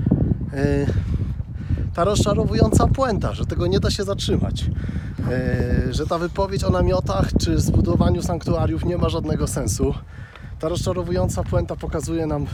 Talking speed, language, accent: 125 wpm, Polish, native